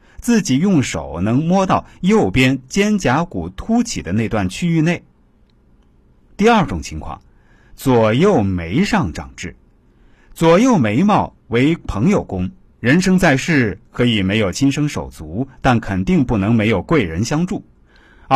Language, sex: Chinese, male